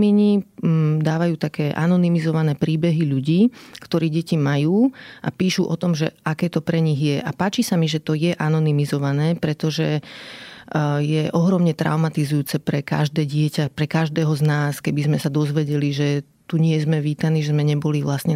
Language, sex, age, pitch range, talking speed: Slovak, female, 30-49, 150-175 Hz, 165 wpm